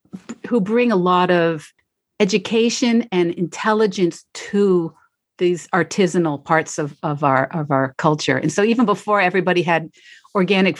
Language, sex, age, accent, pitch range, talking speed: English, female, 50-69, American, 165-225 Hz, 140 wpm